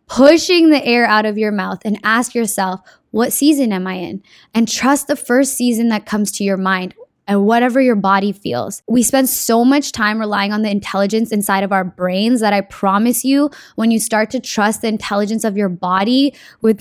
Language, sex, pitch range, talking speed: English, female, 210-270 Hz, 205 wpm